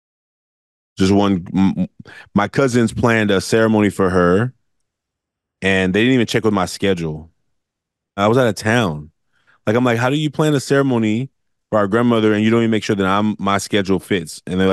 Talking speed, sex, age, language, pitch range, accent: 195 wpm, male, 20-39, English, 90-120 Hz, American